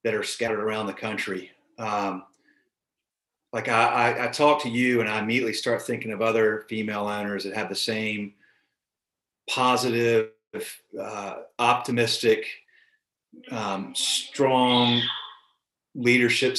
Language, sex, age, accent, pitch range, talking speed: English, male, 40-59, American, 105-125 Hz, 120 wpm